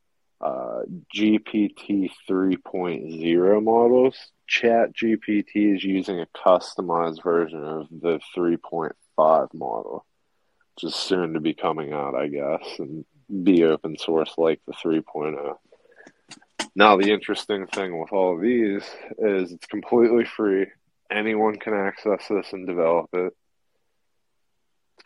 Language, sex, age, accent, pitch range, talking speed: English, male, 20-39, American, 85-105 Hz, 120 wpm